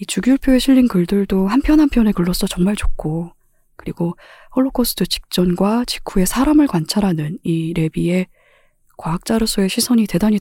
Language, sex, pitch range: Korean, female, 175-235 Hz